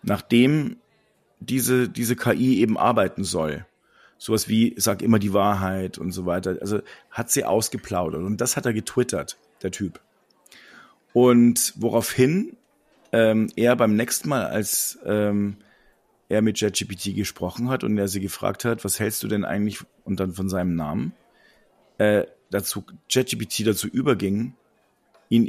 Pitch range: 105-125 Hz